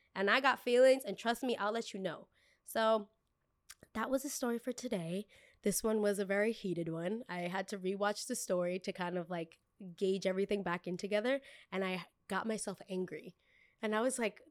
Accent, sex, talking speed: American, female, 205 wpm